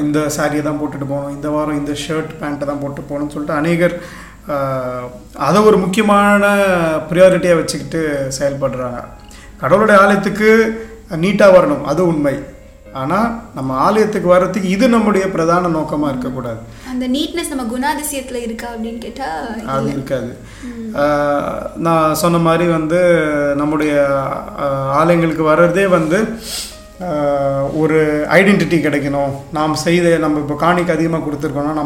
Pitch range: 145-180 Hz